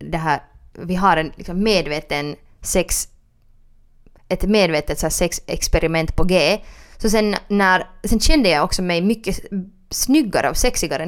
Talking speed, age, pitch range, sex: 135 wpm, 20-39, 160-195 Hz, female